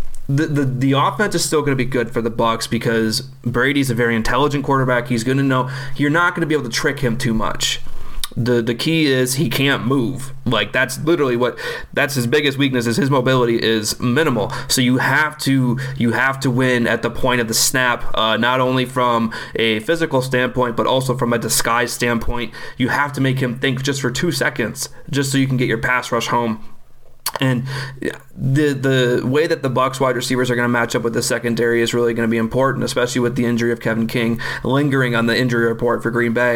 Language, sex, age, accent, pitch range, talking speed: English, male, 30-49, American, 120-135 Hz, 225 wpm